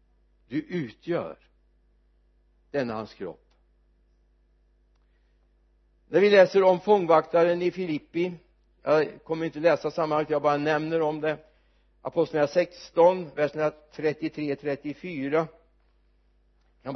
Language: Swedish